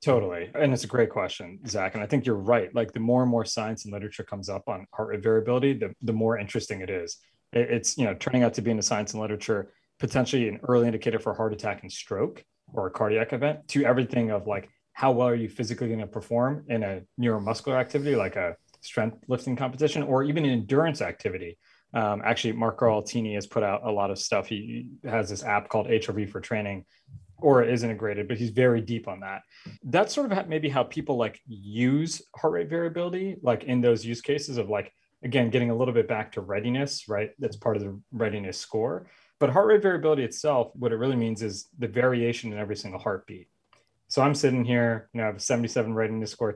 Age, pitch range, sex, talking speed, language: 20-39, 110-130 Hz, male, 225 wpm, English